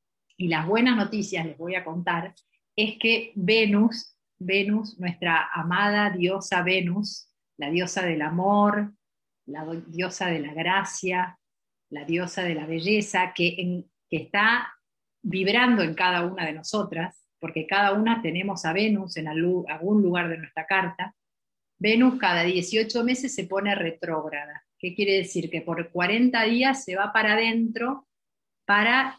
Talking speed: 150 wpm